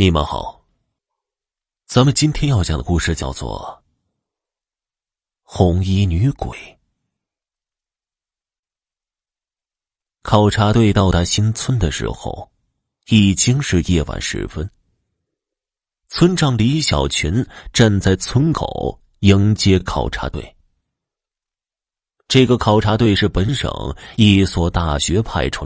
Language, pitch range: Chinese, 85-120 Hz